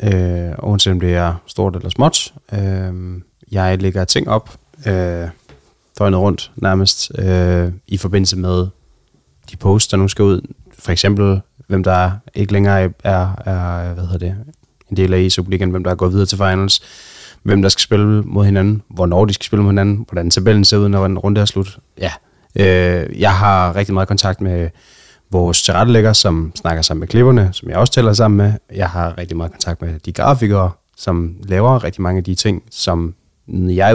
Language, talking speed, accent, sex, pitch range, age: Danish, 195 wpm, native, male, 90-100 Hz, 30-49